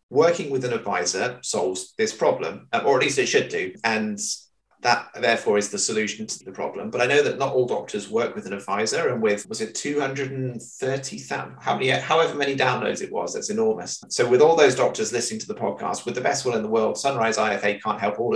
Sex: male